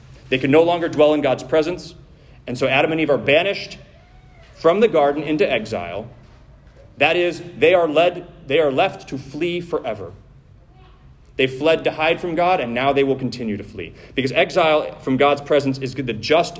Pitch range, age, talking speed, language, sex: 130-170 Hz, 40-59, 180 wpm, English, male